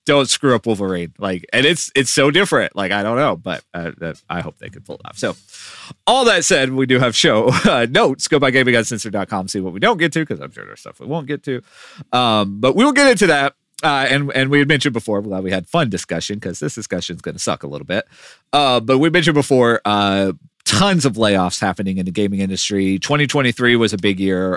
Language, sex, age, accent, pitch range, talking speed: English, male, 30-49, American, 100-145 Hz, 245 wpm